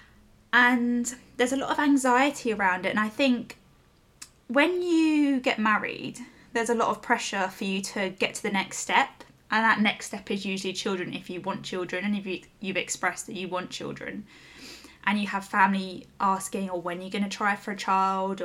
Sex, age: female, 10-29